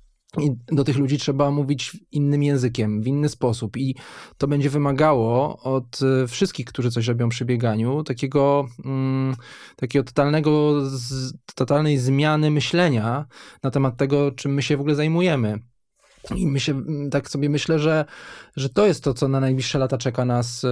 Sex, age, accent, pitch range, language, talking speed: male, 20-39, native, 120-140 Hz, Polish, 160 wpm